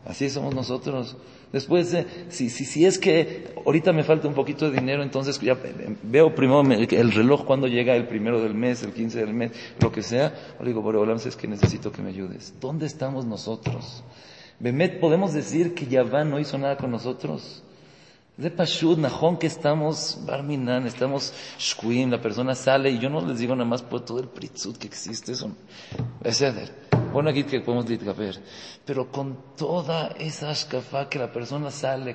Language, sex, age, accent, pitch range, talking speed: English, male, 40-59, Mexican, 120-150 Hz, 185 wpm